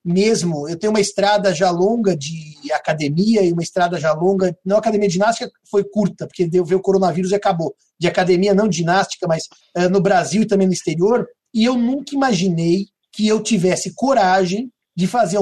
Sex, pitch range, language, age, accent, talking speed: male, 185-230 Hz, Portuguese, 50-69, Brazilian, 195 wpm